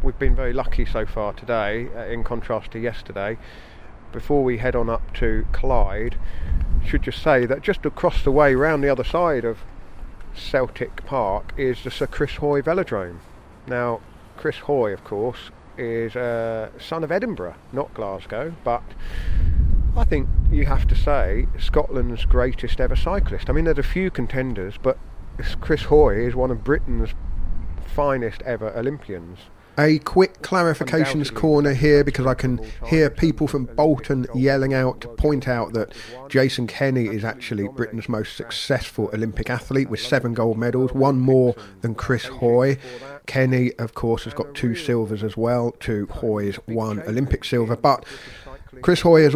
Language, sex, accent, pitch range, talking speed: English, male, British, 110-135 Hz, 165 wpm